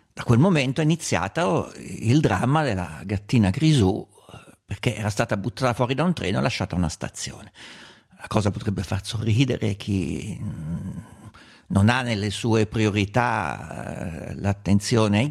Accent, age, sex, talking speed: native, 50-69, male, 140 wpm